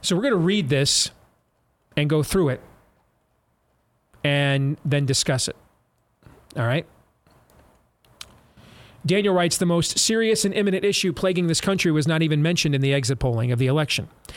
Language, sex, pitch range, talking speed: English, male, 140-180 Hz, 160 wpm